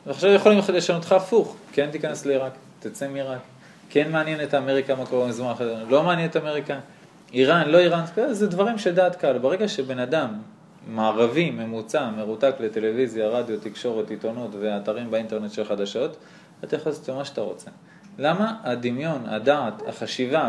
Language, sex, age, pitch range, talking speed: Hebrew, male, 20-39, 125-185 Hz, 160 wpm